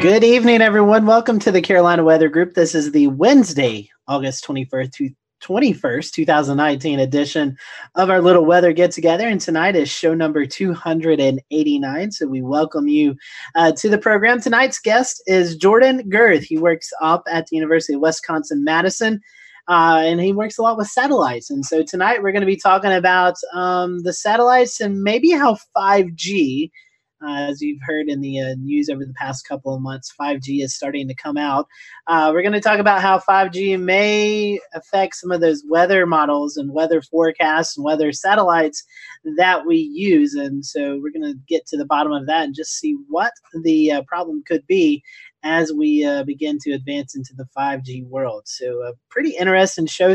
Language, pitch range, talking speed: English, 145-195 Hz, 195 wpm